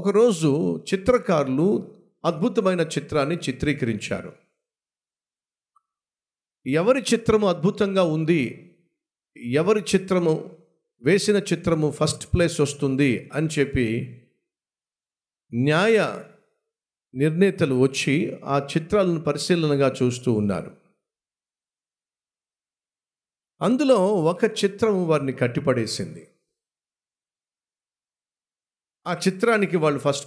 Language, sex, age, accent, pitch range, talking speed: Telugu, male, 50-69, native, 135-195 Hz, 70 wpm